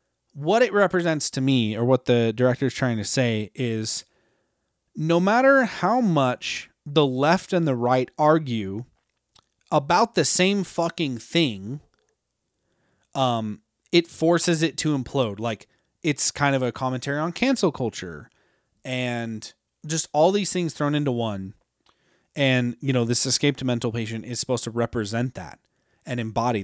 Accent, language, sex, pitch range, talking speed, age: American, English, male, 115-160 Hz, 150 wpm, 30-49